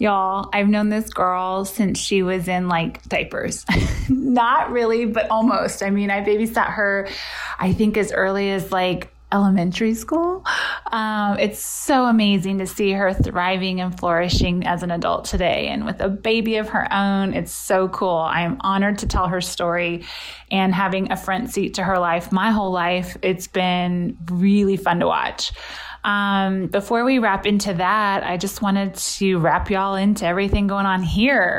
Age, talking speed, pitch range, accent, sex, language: 20-39, 175 wpm, 185-220 Hz, American, female, English